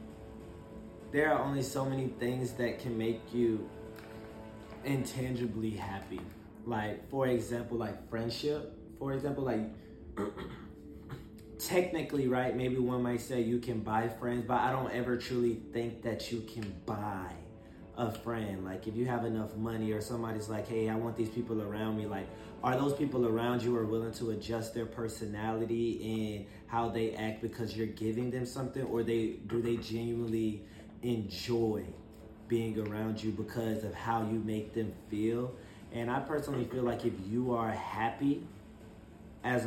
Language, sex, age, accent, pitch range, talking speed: English, male, 20-39, American, 110-120 Hz, 160 wpm